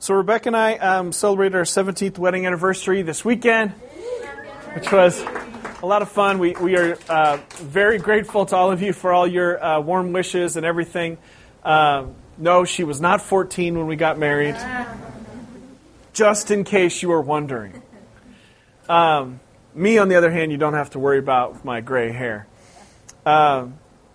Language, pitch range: English, 145-195 Hz